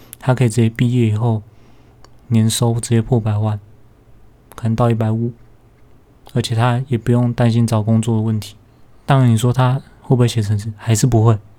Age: 20-39